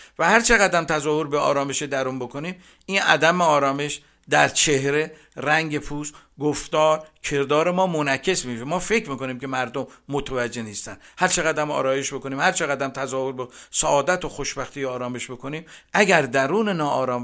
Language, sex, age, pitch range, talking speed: Persian, male, 50-69, 135-180 Hz, 145 wpm